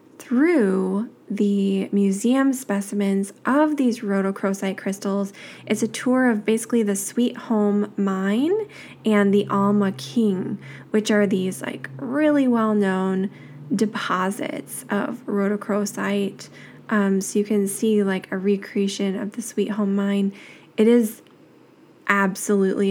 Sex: female